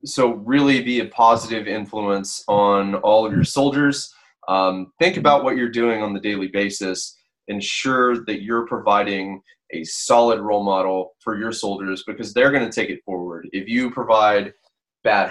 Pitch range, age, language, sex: 95-120 Hz, 20-39, English, male